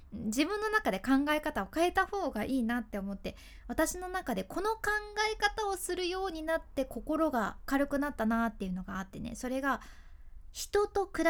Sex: female